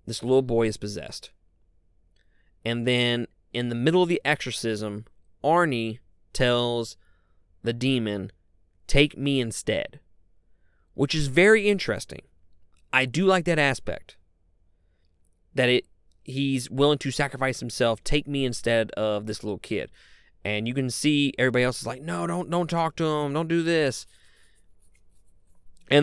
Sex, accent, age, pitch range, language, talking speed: male, American, 20-39, 90-135 Hz, English, 140 wpm